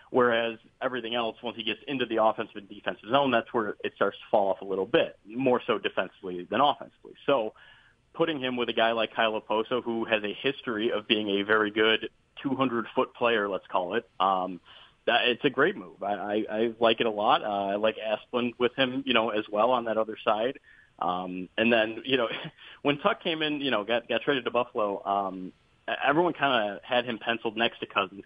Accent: American